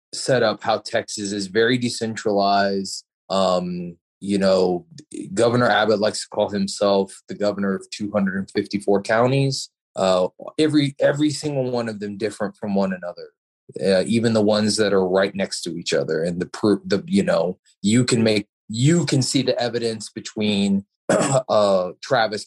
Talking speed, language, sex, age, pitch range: 160 wpm, English, male, 20-39, 95-115 Hz